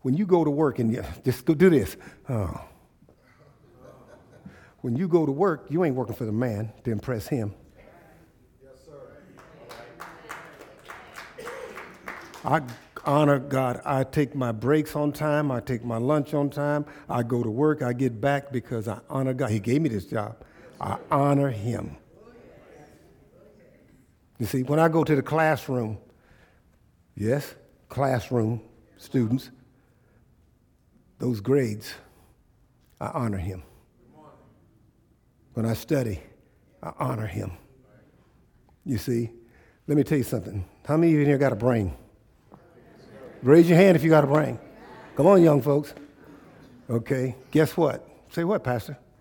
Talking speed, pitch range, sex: 140 wpm, 115-150 Hz, male